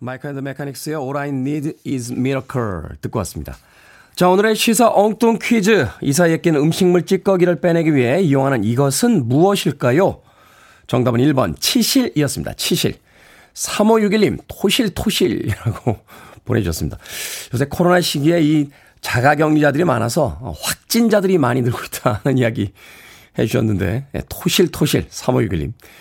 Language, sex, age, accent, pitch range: Korean, male, 40-59, native, 130-195 Hz